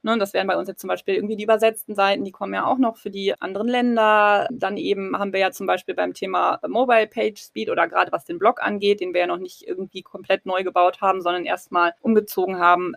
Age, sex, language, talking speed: 20-39, female, German, 240 wpm